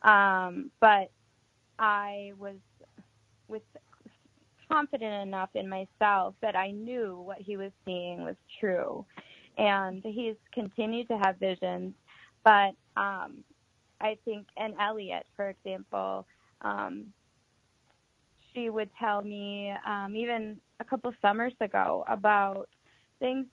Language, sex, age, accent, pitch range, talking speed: English, female, 20-39, American, 190-225 Hz, 115 wpm